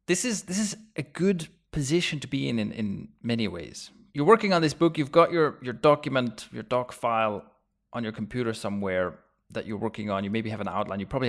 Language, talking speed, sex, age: English, 225 wpm, male, 30-49